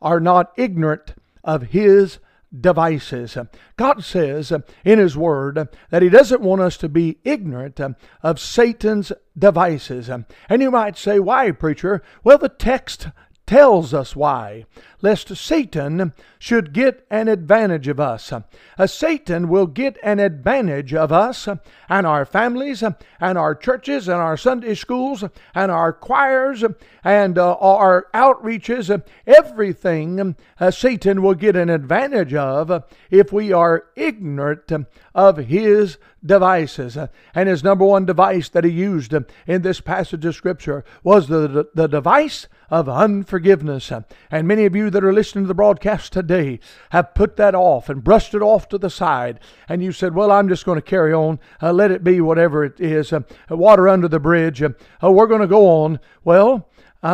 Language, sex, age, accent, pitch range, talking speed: English, male, 60-79, American, 155-210 Hz, 160 wpm